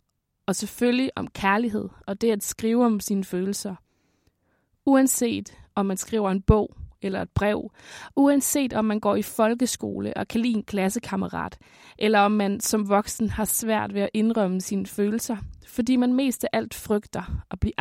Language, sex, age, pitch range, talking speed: Danish, female, 20-39, 190-235 Hz, 170 wpm